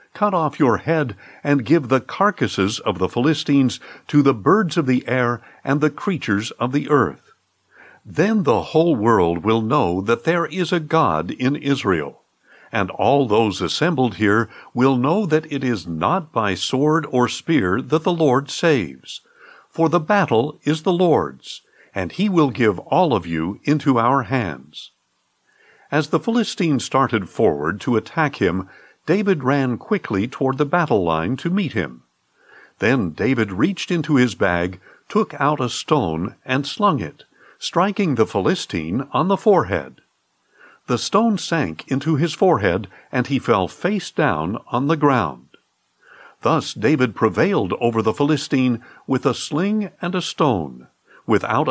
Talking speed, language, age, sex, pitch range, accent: 155 wpm, English, 60-79, male, 115-165 Hz, American